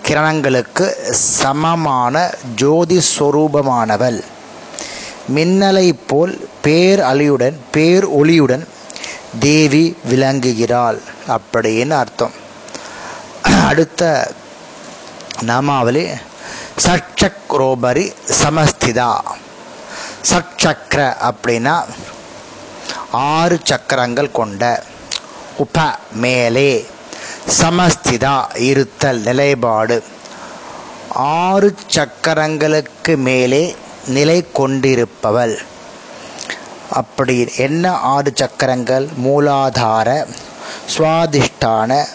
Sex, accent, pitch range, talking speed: male, native, 125-155 Hz, 55 wpm